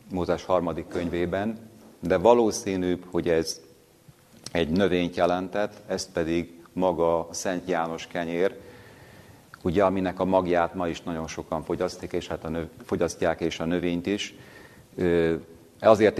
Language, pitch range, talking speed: Hungarian, 80-95 Hz, 130 wpm